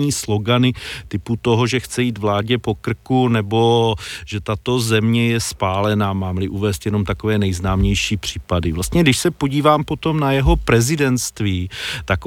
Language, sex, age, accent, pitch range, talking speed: Czech, male, 40-59, native, 110-135 Hz, 145 wpm